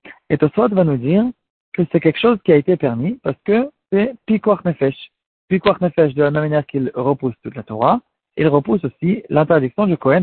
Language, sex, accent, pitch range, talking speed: French, male, French, 140-200 Hz, 205 wpm